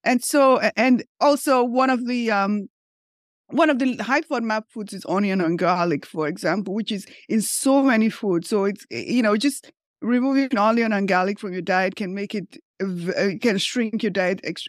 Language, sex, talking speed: English, female, 190 wpm